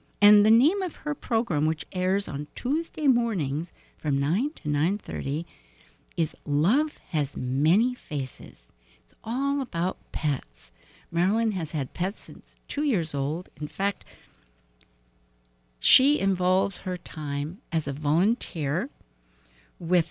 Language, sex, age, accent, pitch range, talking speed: English, female, 60-79, American, 130-205 Hz, 125 wpm